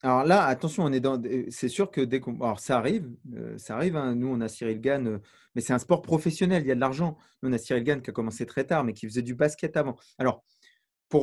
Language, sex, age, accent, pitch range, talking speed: French, male, 30-49, French, 120-160 Hz, 275 wpm